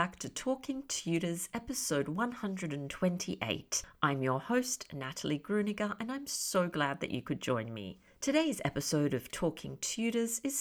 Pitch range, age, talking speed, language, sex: 155-220 Hz, 50-69, 145 wpm, English, female